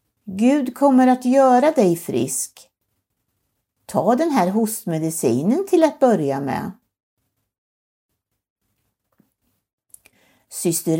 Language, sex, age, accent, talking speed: Swedish, female, 60-79, native, 80 wpm